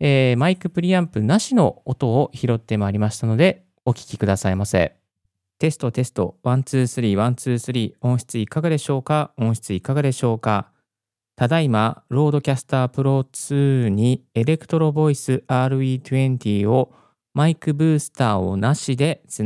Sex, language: male, Japanese